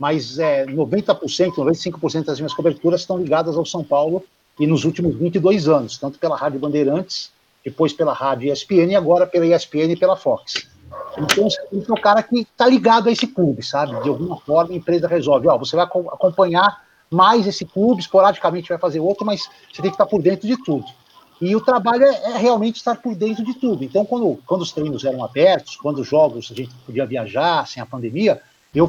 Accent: Brazilian